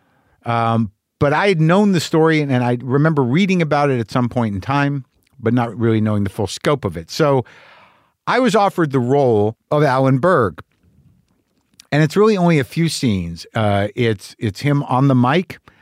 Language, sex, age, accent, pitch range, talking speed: English, male, 50-69, American, 115-150 Hz, 195 wpm